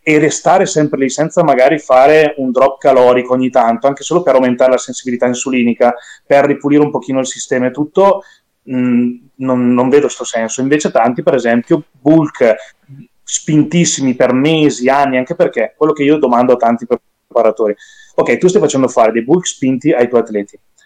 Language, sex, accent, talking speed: Italian, male, native, 180 wpm